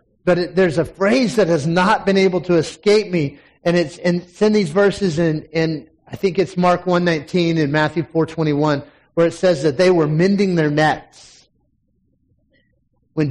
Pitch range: 160-195 Hz